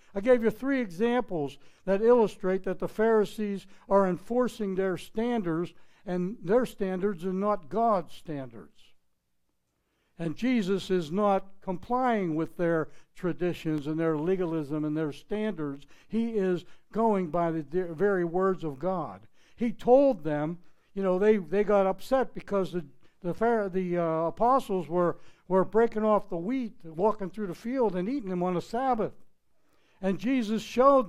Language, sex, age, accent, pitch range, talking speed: English, male, 60-79, American, 165-220 Hz, 155 wpm